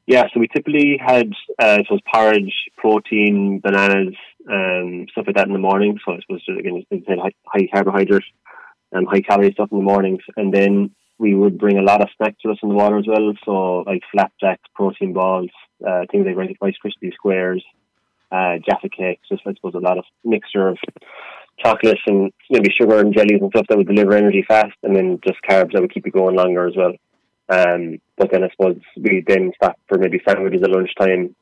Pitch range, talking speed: 95-110 Hz, 210 wpm